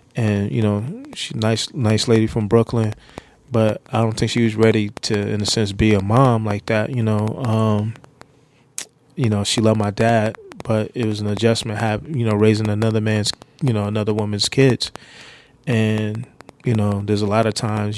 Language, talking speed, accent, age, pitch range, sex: English, 195 wpm, American, 20-39, 105-115 Hz, male